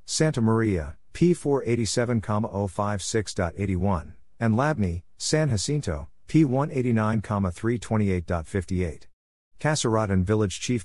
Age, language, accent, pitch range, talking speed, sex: 50-69, English, American, 90-115 Hz, 60 wpm, male